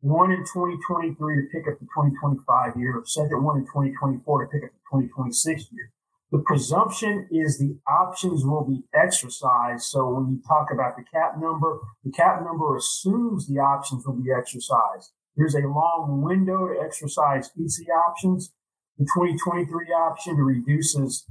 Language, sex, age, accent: English, male, 40-59, American